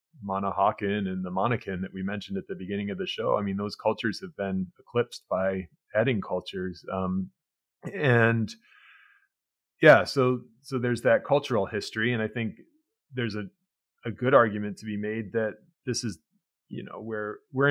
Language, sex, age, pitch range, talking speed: English, male, 30-49, 95-120 Hz, 170 wpm